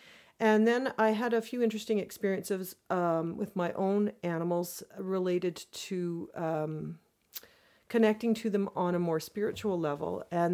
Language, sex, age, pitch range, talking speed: English, female, 40-59, 180-215 Hz, 140 wpm